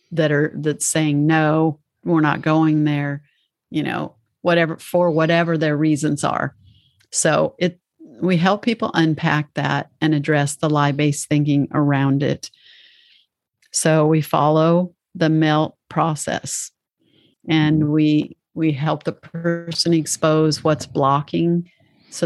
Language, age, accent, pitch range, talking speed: English, 50-69, American, 150-175 Hz, 125 wpm